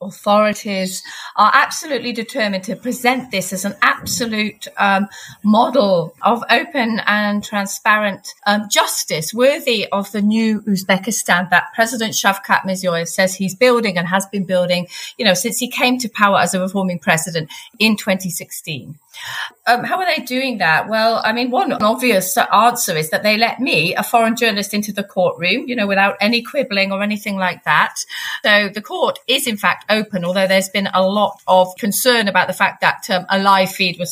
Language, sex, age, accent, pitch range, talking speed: English, female, 30-49, British, 185-230 Hz, 180 wpm